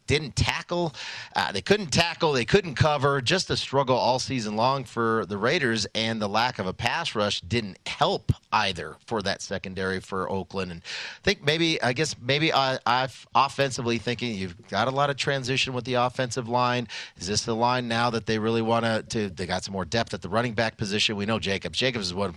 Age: 40-59